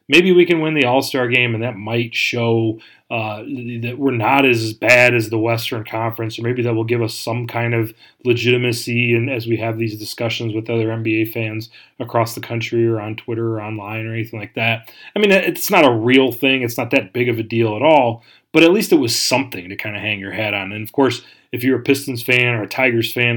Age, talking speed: 30-49, 240 wpm